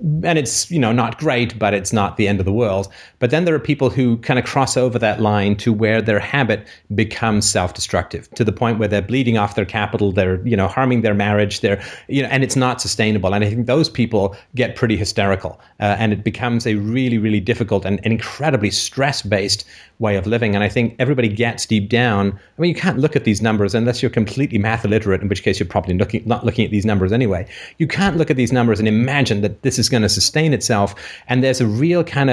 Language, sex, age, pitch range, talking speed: English, male, 30-49, 105-125 Hz, 240 wpm